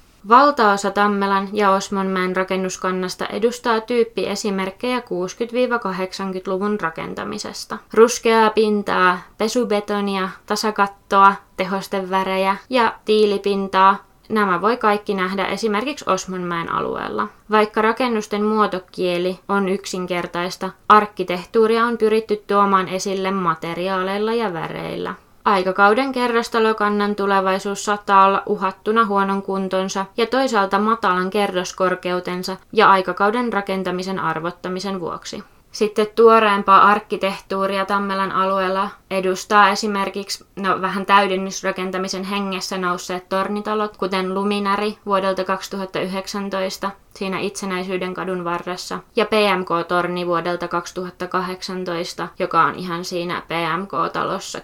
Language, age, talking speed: Finnish, 20-39, 95 wpm